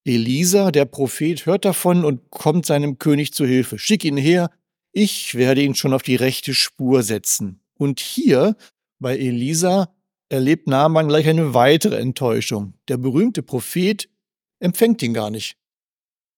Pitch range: 130-175 Hz